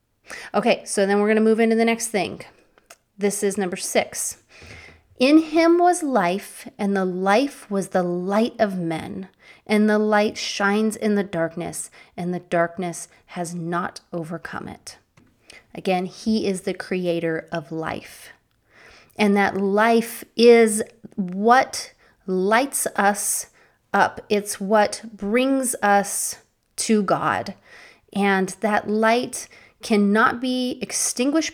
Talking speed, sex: 130 wpm, female